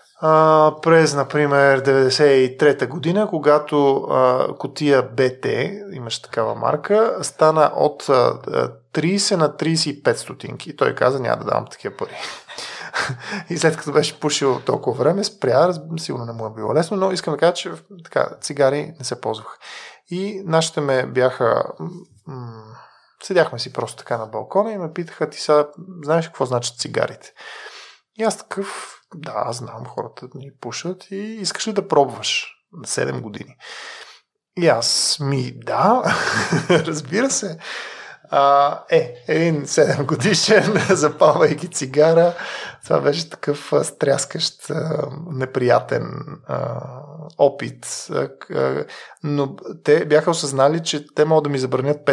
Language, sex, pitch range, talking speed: Bulgarian, male, 140-180 Hz, 135 wpm